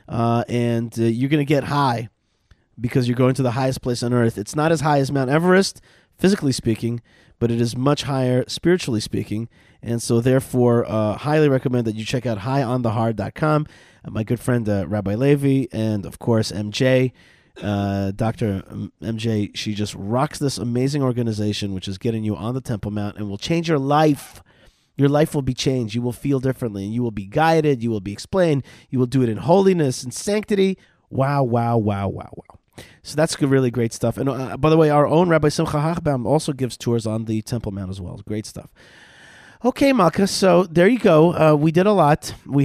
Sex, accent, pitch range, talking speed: male, American, 115-150 Hz, 205 wpm